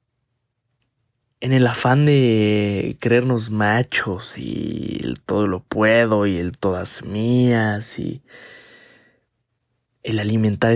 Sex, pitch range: male, 110-120 Hz